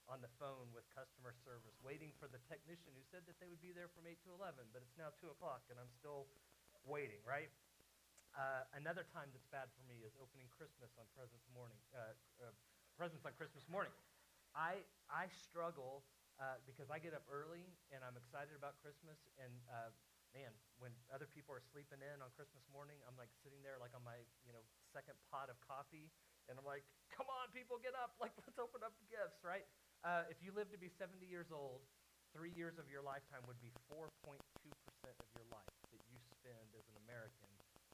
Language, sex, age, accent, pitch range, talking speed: English, male, 40-59, American, 120-150 Hz, 205 wpm